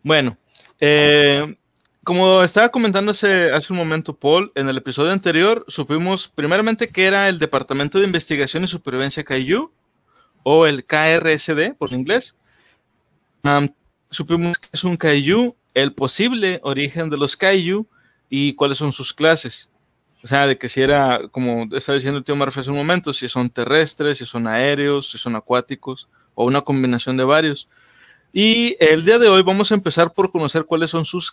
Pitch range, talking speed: 135-190 Hz, 170 wpm